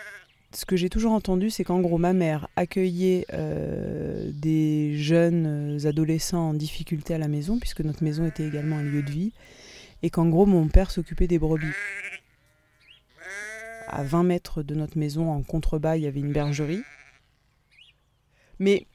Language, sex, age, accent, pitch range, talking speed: French, female, 20-39, French, 155-185 Hz, 160 wpm